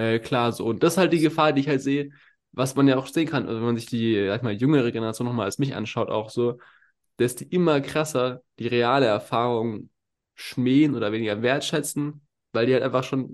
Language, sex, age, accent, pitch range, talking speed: German, male, 20-39, German, 115-140 Hz, 225 wpm